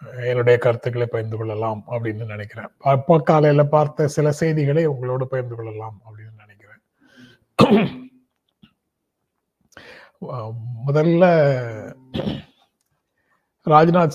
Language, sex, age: Tamil, male, 30-49